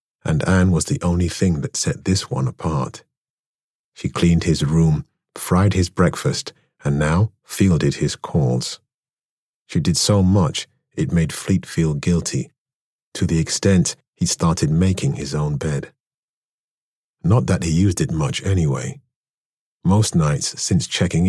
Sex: male